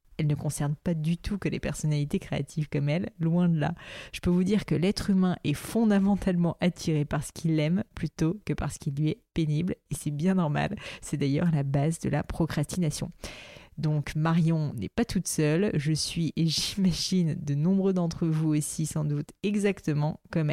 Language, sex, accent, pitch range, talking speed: French, female, French, 150-185 Hz, 195 wpm